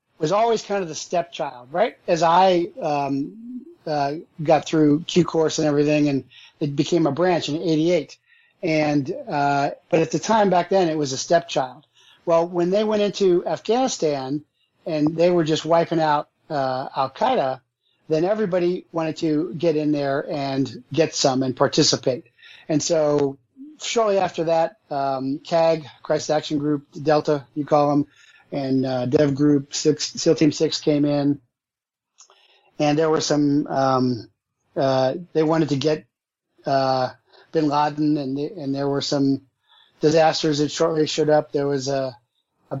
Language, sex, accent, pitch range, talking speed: English, male, American, 135-165 Hz, 160 wpm